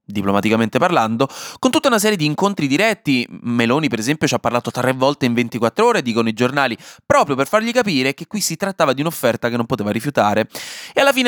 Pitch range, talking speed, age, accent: 110-165 Hz, 215 wpm, 20-39, native